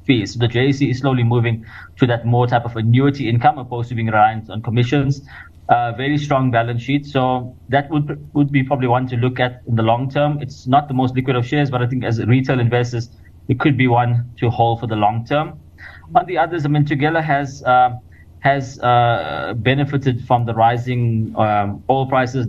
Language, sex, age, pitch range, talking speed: English, male, 20-39, 115-135 Hz, 210 wpm